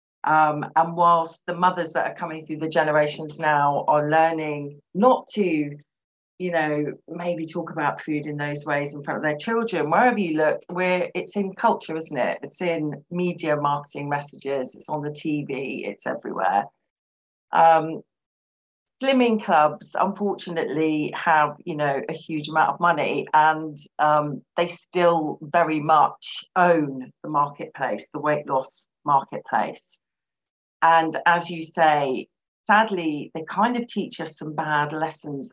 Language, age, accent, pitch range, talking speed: English, 40-59, British, 145-170 Hz, 145 wpm